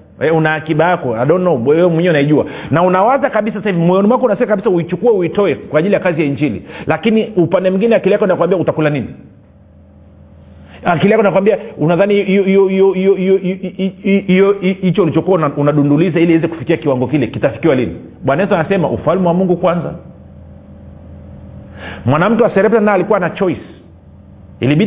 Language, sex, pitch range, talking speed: Swahili, male, 140-195 Hz, 135 wpm